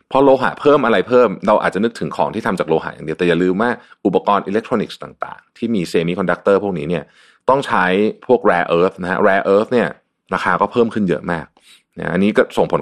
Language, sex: Thai, male